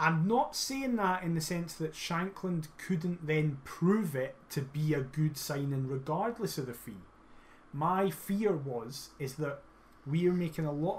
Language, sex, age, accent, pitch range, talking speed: English, male, 30-49, British, 140-180 Hz, 170 wpm